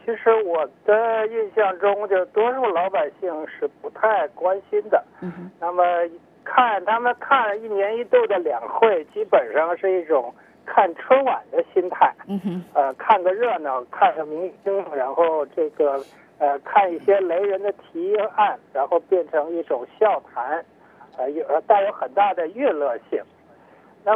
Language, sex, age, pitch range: English, male, 60-79, 170-240 Hz